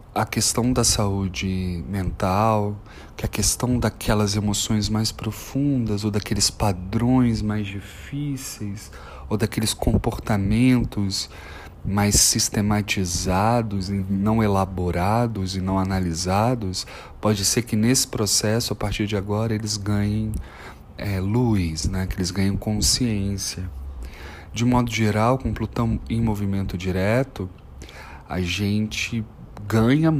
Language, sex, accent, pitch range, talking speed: Portuguese, male, Brazilian, 90-110 Hz, 110 wpm